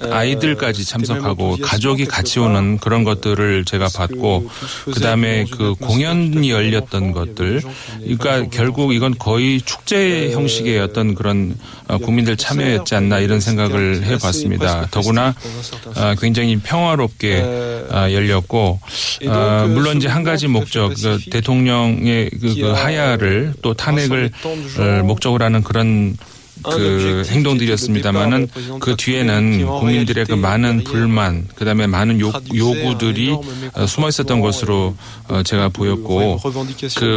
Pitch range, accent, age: 105-125 Hz, native, 40-59